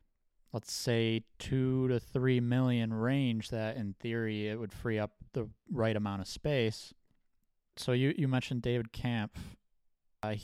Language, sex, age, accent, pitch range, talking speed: English, male, 20-39, American, 105-130 Hz, 150 wpm